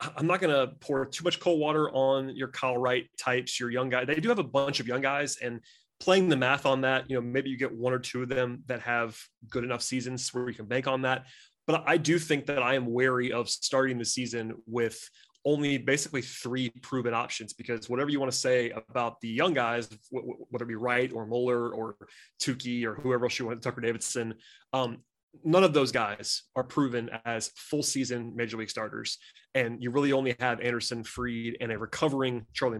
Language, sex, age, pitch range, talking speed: English, male, 30-49, 120-135 Hz, 220 wpm